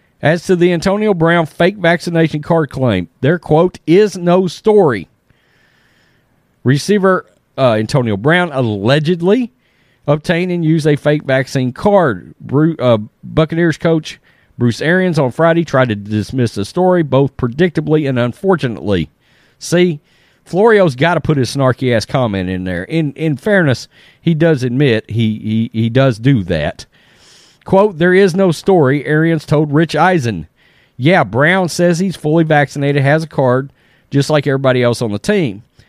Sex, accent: male, American